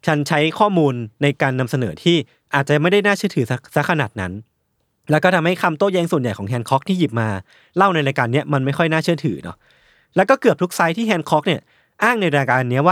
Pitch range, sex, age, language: 135-175 Hz, male, 20-39, Thai